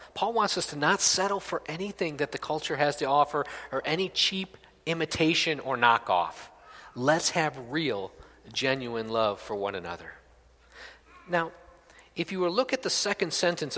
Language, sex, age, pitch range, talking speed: English, male, 40-59, 125-185 Hz, 165 wpm